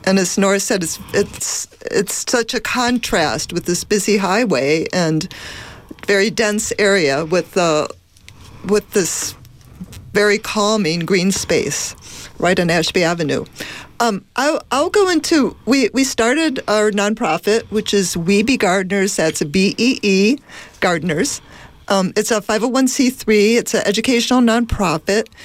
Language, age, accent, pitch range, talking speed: English, 50-69, American, 180-225 Hz, 135 wpm